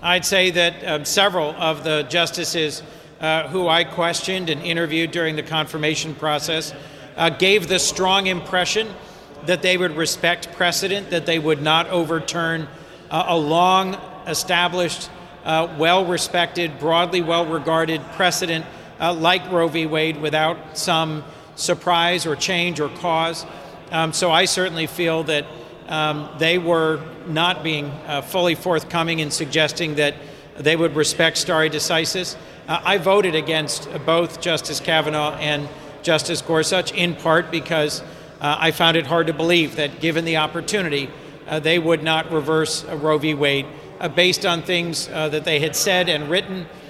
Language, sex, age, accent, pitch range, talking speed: English, male, 50-69, American, 155-175 Hz, 150 wpm